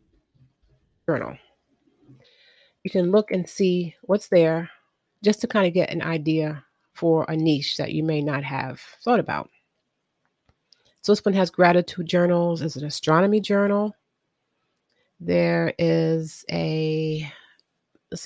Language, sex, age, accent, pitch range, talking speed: English, female, 30-49, American, 160-195 Hz, 130 wpm